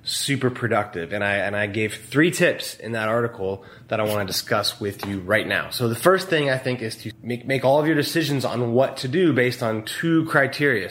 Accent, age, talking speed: American, 20-39, 235 wpm